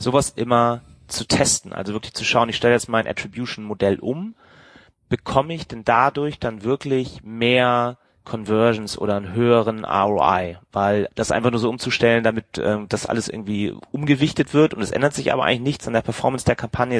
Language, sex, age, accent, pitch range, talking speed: German, male, 30-49, German, 105-120 Hz, 180 wpm